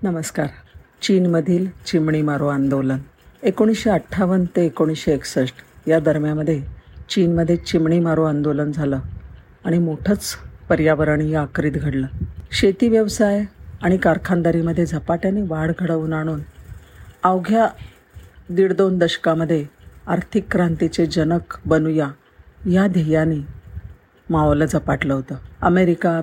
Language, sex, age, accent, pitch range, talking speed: Marathi, female, 50-69, native, 155-190 Hz, 100 wpm